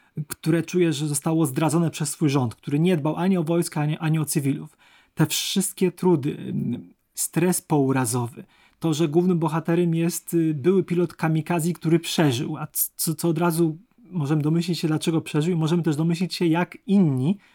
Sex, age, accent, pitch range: male, 30-49, native, 155-180 Hz